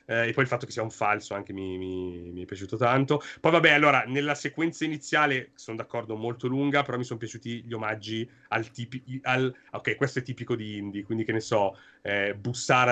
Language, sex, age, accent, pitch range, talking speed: Italian, male, 30-49, native, 115-145 Hz, 215 wpm